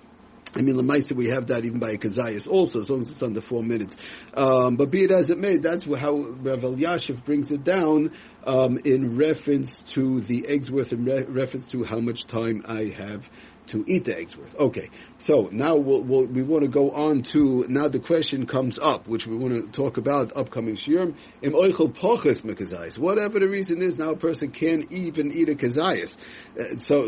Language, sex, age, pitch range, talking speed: English, male, 50-69, 125-155 Hz, 200 wpm